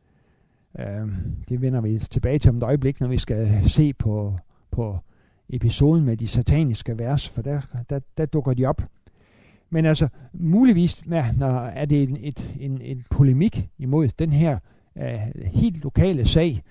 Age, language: 60-79, Danish